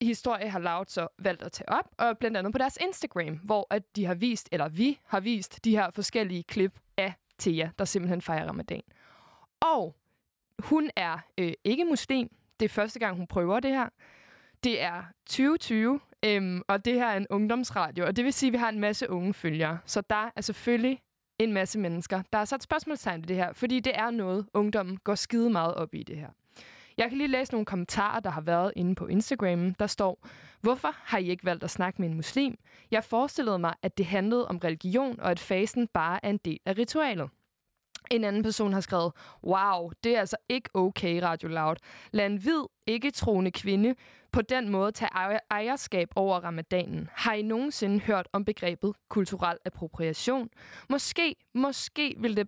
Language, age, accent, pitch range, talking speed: Danish, 20-39, native, 185-235 Hz, 200 wpm